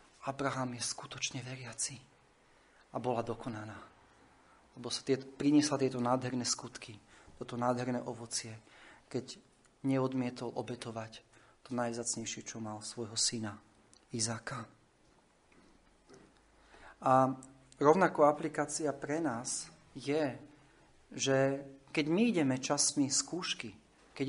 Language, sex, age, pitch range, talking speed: Slovak, male, 40-59, 125-155 Hz, 100 wpm